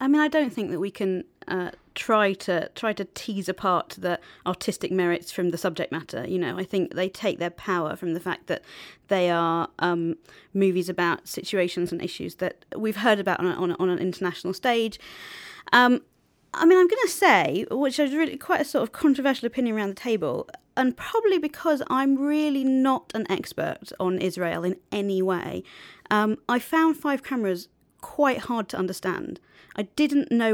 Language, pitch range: English, 190-265 Hz